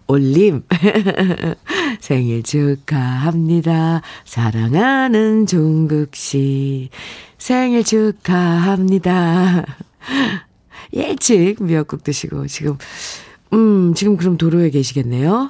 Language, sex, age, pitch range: Korean, female, 50-69, 150-215 Hz